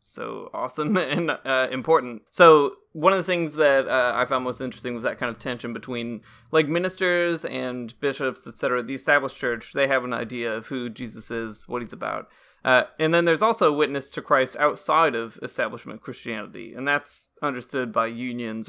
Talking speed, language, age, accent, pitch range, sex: 185 wpm, English, 20-39, American, 125-150 Hz, male